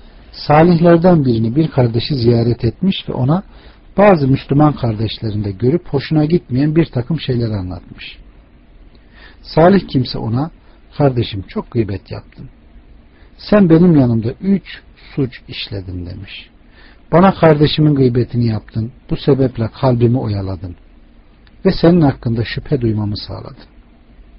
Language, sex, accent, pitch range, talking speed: Turkish, male, native, 90-140 Hz, 115 wpm